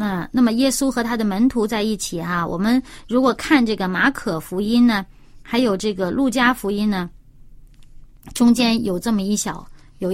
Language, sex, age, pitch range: Chinese, female, 30-49, 190-270 Hz